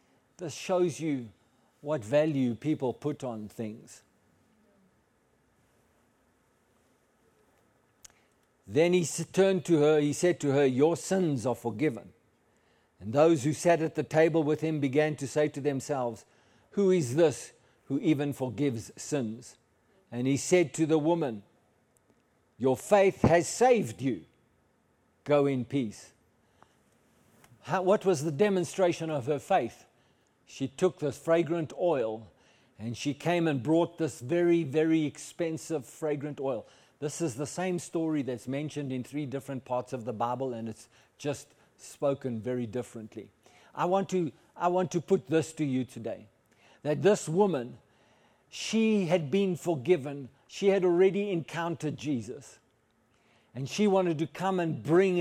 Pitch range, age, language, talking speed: 130-170 Hz, 60-79, English, 140 wpm